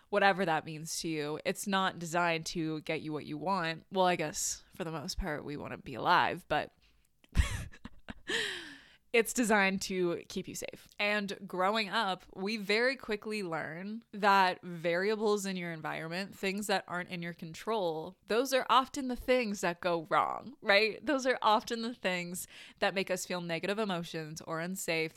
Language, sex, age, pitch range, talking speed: English, female, 20-39, 170-210 Hz, 170 wpm